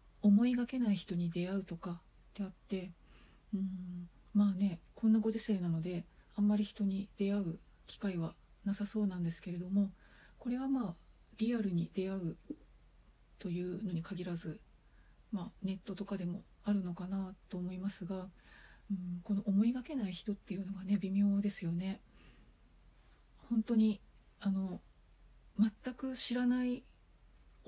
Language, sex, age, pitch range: Japanese, female, 40-59, 175-205 Hz